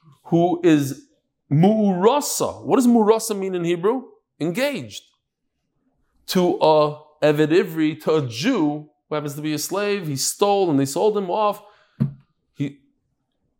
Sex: male